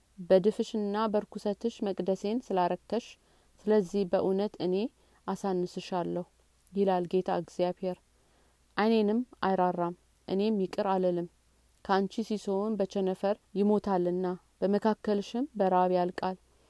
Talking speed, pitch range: 85 wpm, 185-215 Hz